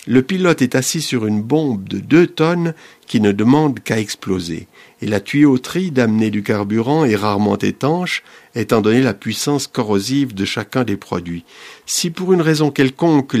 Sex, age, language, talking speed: male, 50-69, French, 170 wpm